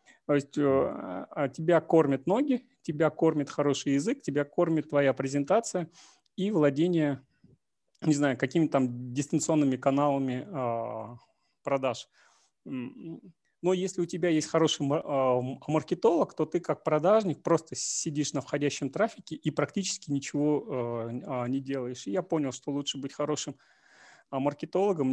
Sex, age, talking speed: male, 30-49, 120 wpm